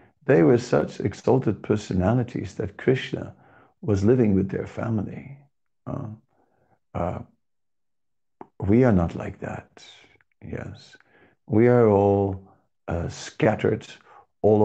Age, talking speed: 60-79, 105 wpm